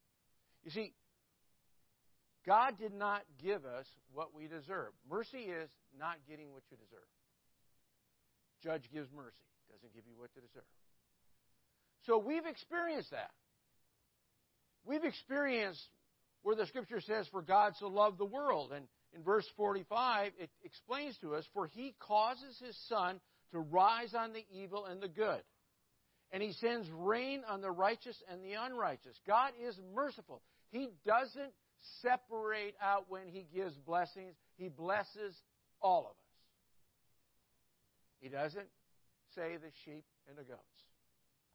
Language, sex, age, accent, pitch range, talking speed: English, male, 50-69, American, 160-230 Hz, 140 wpm